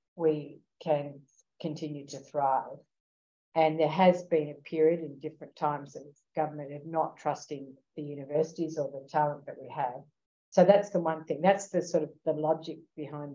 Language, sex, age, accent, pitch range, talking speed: English, female, 50-69, Australian, 140-160 Hz, 175 wpm